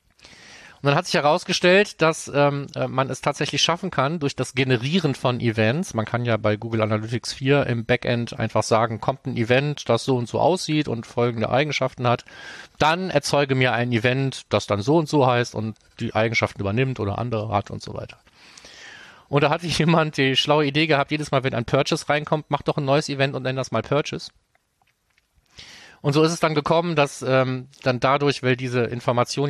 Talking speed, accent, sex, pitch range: 195 wpm, German, male, 120-145 Hz